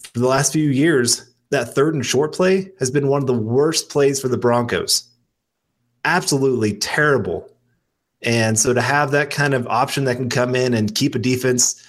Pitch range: 115-140 Hz